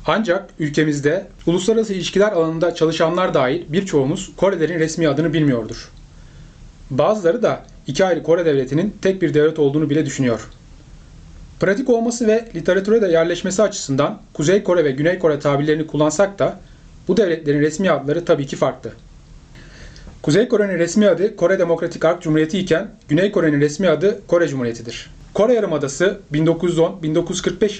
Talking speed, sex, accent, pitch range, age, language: 140 wpm, male, native, 150-195 Hz, 30-49, Turkish